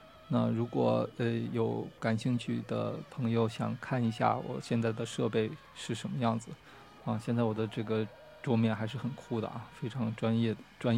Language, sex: Chinese, male